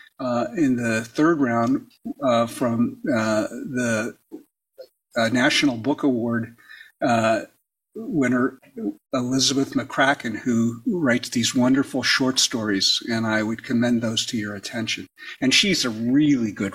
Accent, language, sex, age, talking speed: American, English, male, 50-69, 130 wpm